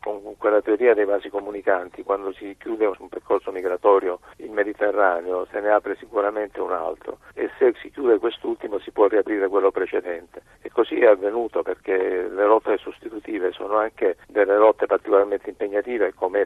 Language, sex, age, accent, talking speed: Italian, male, 50-69, native, 165 wpm